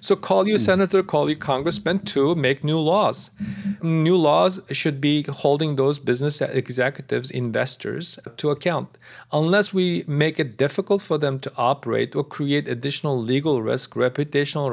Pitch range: 125-160 Hz